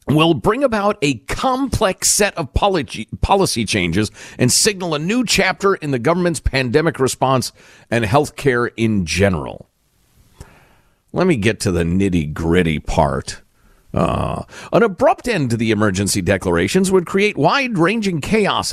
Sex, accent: male, American